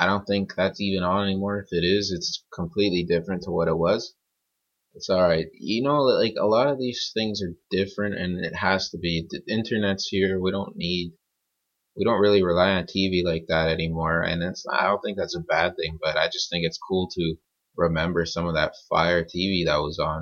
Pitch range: 85-100 Hz